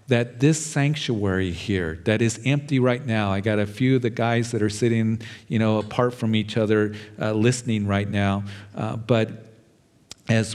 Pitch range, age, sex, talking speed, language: 110-135 Hz, 50-69, male, 180 wpm, English